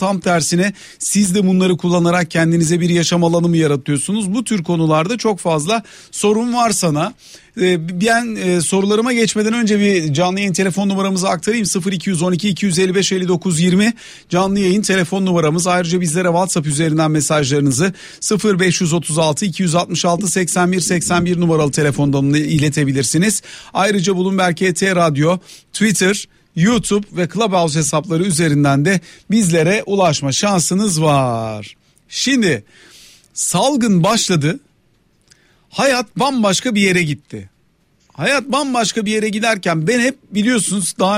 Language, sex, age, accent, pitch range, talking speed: Turkish, male, 40-59, native, 165-205 Hz, 115 wpm